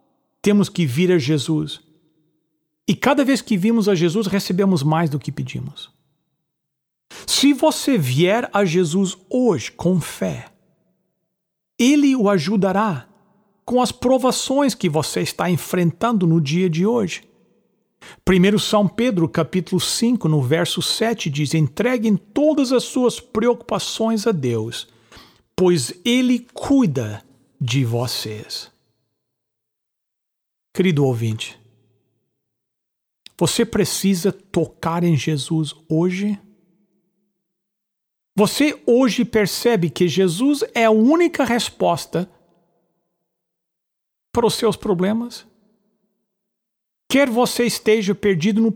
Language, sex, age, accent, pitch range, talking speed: English, male, 60-79, Brazilian, 165-230 Hz, 105 wpm